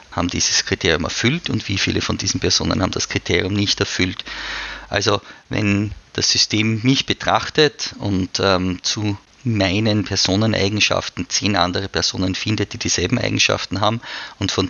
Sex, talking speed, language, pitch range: male, 145 wpm, German, 90-110 Hz